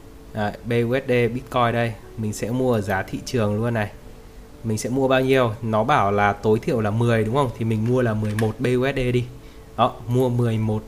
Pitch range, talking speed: 110-130 Hz, 205 wpm